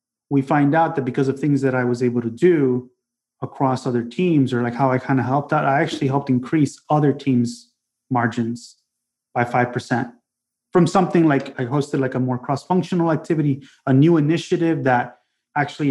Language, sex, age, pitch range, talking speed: English, male, 30-49, 125-145 Hz, 180 wpm